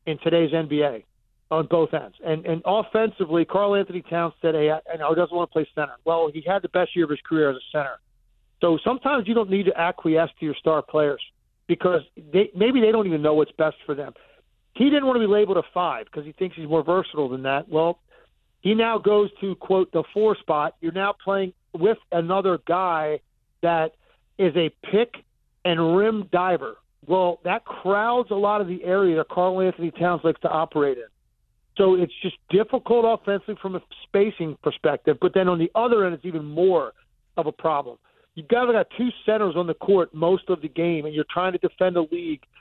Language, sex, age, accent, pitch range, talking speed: English, male, 50-69, American, 160-200 Hz, 210 wpm